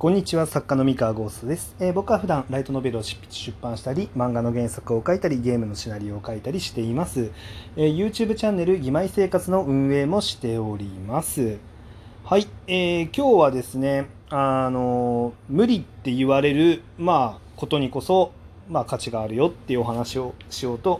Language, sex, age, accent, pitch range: Japanese, male, 30-49, native, 110-160 Hz